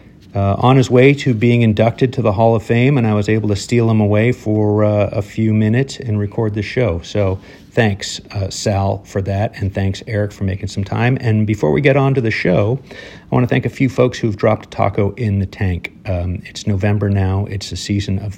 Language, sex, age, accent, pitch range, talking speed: English, male, 40-59, American, 100-115 Hz, 240 wpm